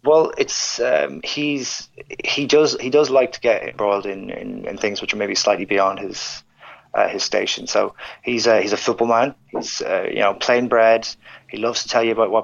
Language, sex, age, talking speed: English, male, 20-39, 215 wpm